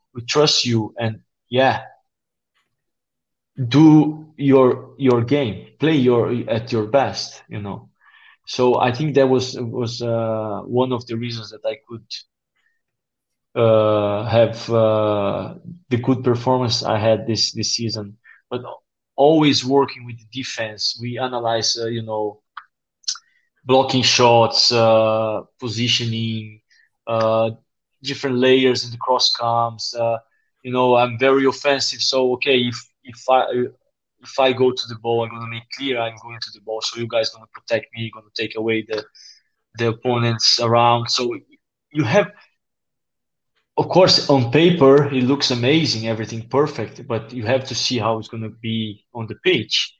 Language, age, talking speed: English, 20-39, 160 wpm